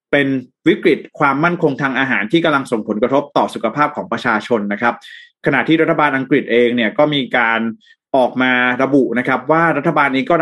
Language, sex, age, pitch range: Thai, male, 20-39, 125-160 Hz